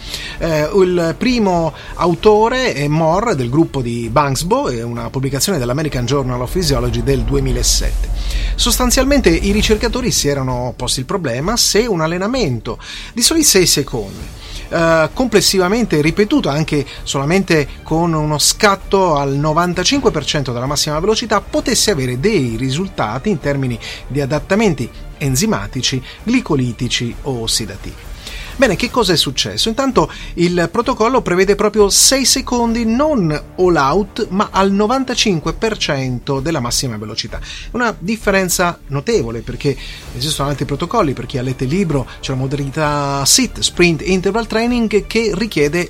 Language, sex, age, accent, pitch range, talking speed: Italian, male, 30-49, native, 135-200 Hz, 135 wpm